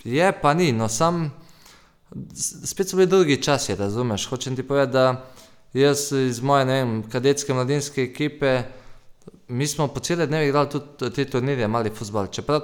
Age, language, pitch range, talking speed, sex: 20-39, Croatian, 115-140 Hz, 165 wpm, male